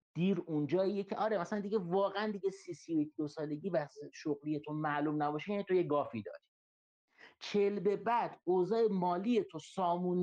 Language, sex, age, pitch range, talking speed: Persian, male, 50-69, 125-180 Hz, 165 wpm